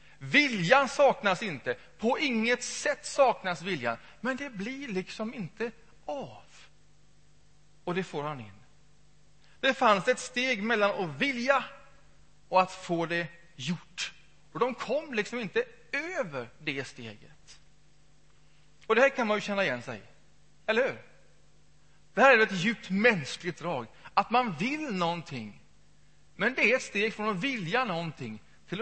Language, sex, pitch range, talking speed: Swedish, male, 155-235 Hz, 150 wpm